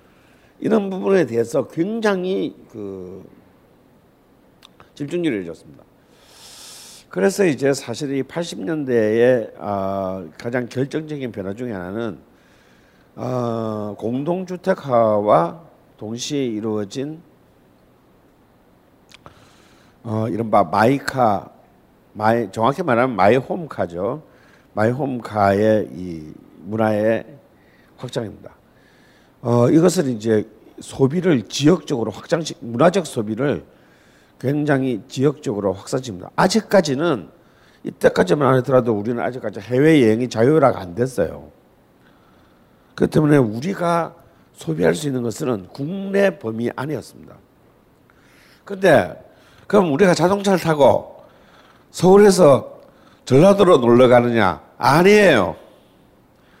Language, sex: Korean, male